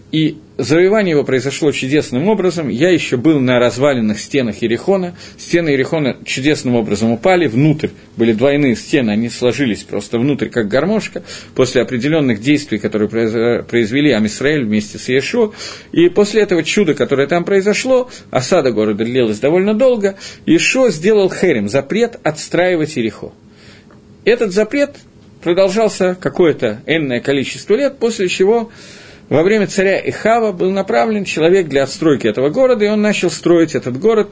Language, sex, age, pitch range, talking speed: Russian, male, 40-59, 130-200 Hz, 140 wpm